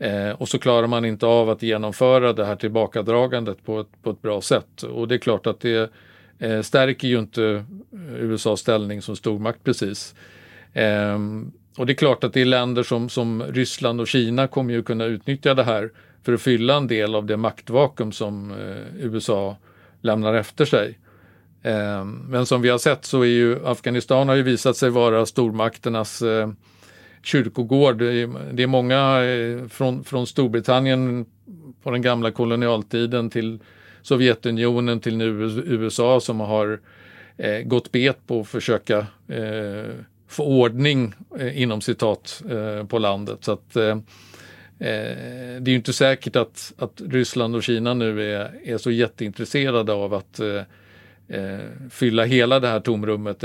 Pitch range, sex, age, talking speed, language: 105-125 Hz, male, 50-69, 155 wpm, Swedish